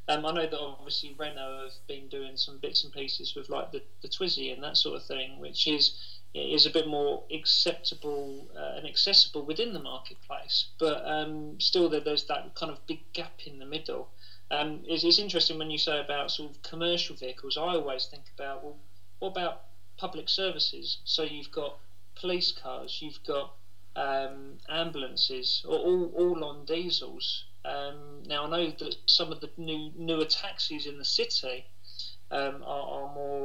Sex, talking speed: male, 180 wpm